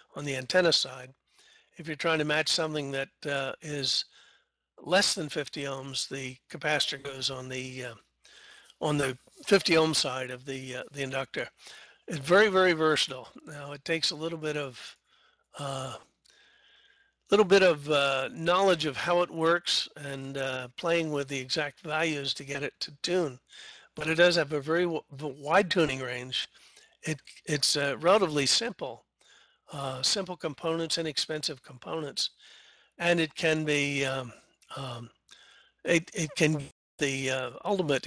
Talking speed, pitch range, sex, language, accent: 155 wpm, 135-165 Hz, male, English, American